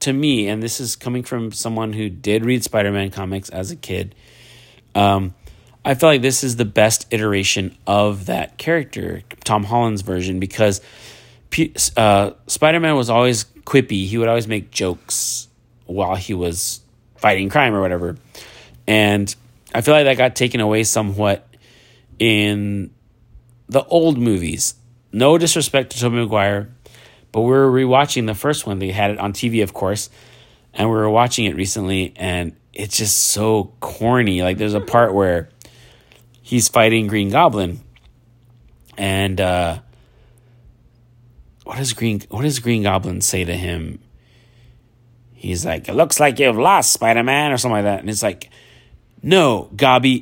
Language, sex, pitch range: English, male, 100-120 Hz